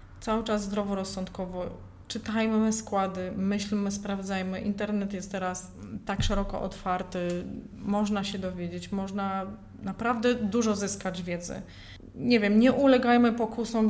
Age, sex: 20-39, female